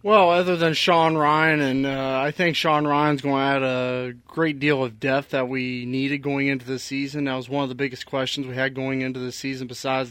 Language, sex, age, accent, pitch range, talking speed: English, male, 30-49, American, 135-150 Hz, 235 wpm